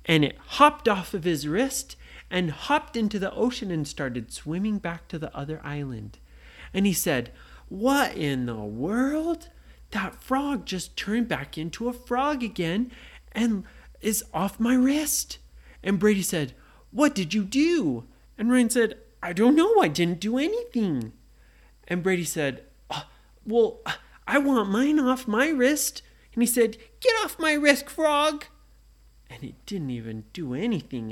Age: 30-49